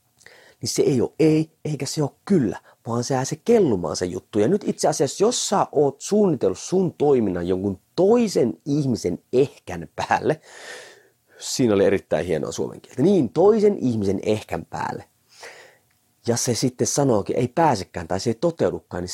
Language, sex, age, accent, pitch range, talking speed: Finnish, male, 30-49, native, 110-180 Hz, 165 wpm